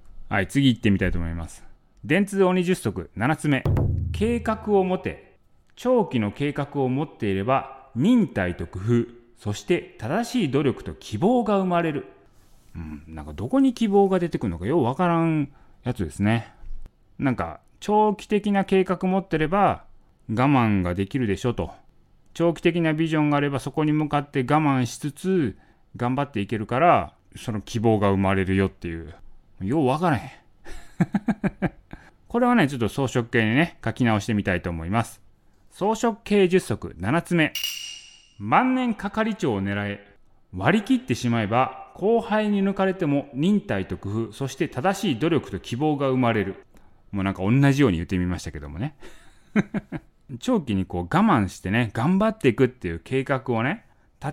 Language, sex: Japanese, male